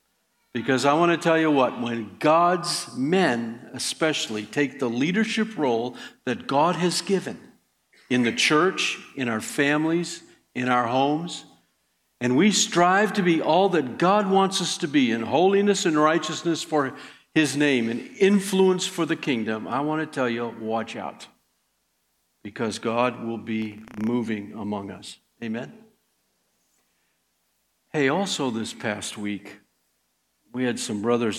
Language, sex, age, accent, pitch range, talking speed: English, male, 60-79, American, 110-150 Hz, 145 wpm